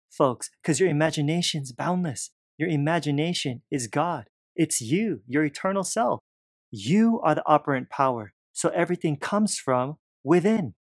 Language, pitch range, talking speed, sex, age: English, 115-155 Hz, 135 wpm, male, 30-49